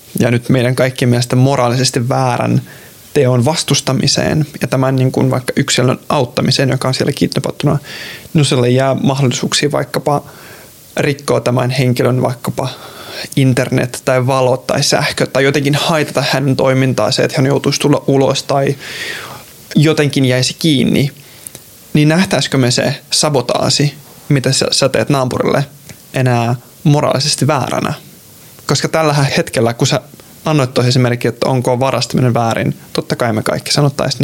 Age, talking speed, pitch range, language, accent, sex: 20-39, 135 wpm, 125-145 Hz, Finnish, native, male